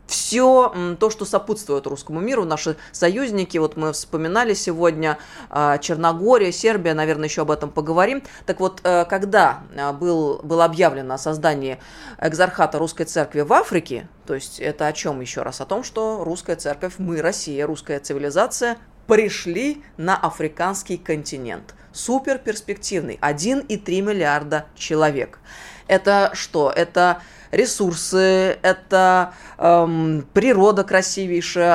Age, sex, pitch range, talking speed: 20-39, female, 155-195 Hz, 120 wpm